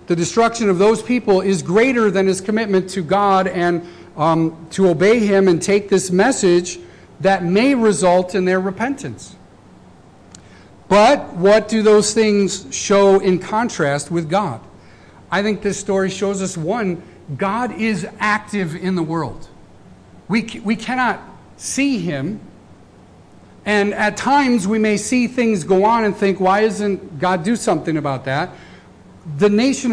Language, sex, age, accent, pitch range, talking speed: English, male, 50-69, American, 175-225 Hz, 150 wpm